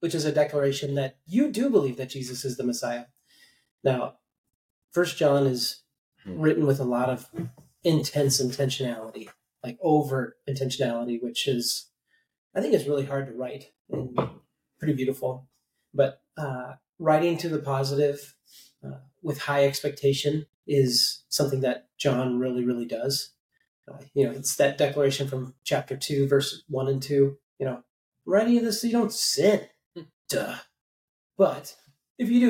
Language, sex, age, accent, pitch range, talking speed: English, male, 30-49, American, 130-165 Hz, 150 wpm